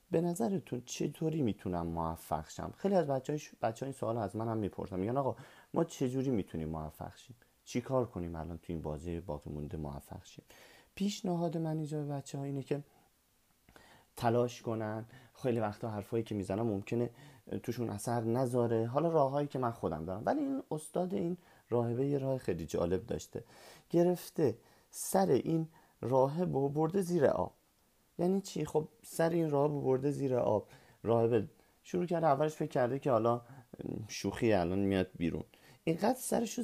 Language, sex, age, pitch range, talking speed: Persian, male, 30-49, 110-165 Hz, 160 wpm